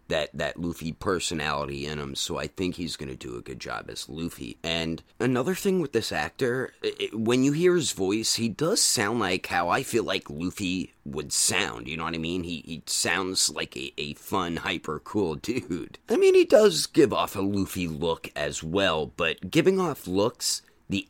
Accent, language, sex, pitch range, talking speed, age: American, English, male, 85-125 Hz, 200 wpm, 30-49